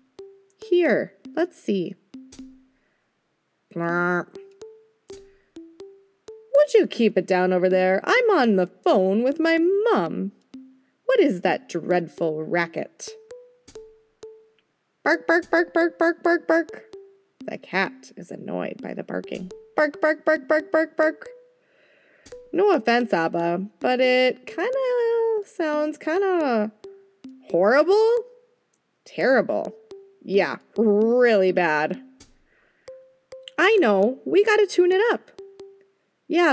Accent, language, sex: American, English, female